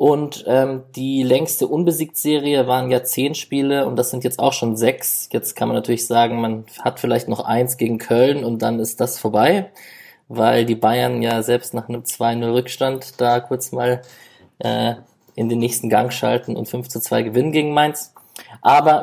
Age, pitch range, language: 20-39, 115-130 Hz, German